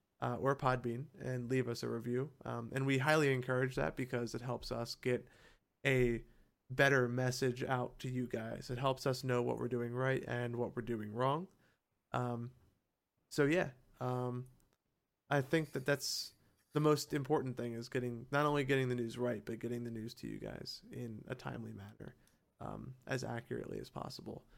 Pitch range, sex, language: 120-135 Hz, male, English